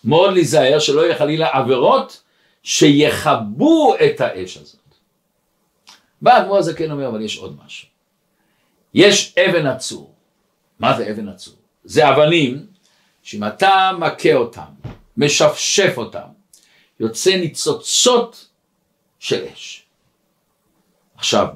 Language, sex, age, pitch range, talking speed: Hebrew, male, 50-69, 145-200 Hz, 100 wpm